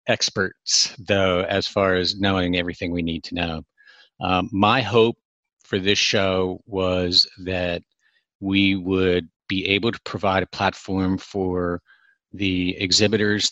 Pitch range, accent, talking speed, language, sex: 90-100 Hz, American, 135 wpm, English, male